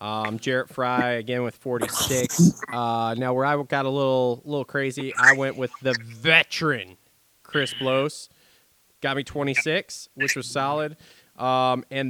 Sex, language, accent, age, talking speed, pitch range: male, English, American, 20-39, 150 wpm, 130-155 Hz